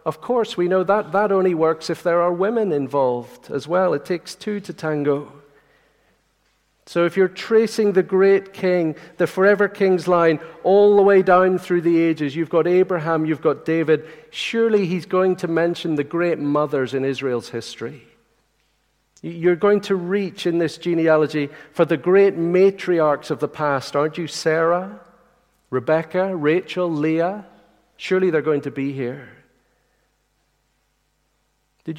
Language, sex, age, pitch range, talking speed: English, male, 50-69, 140-180 Hz, 155 wpm